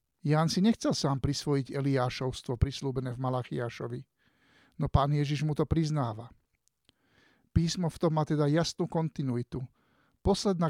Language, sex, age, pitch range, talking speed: Slovak, male, 50-69, 135-160 Hz, 130 wpm